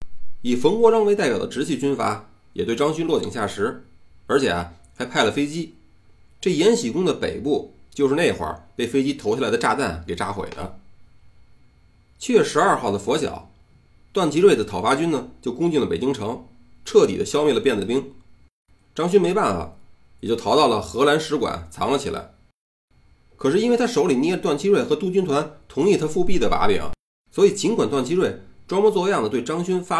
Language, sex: Chinese, male